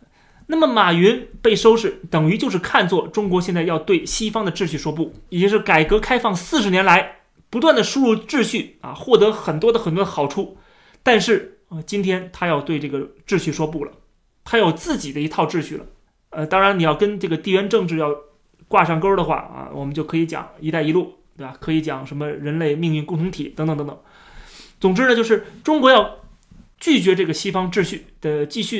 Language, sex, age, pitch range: Chinese, male, 20-39, 155-210 Hz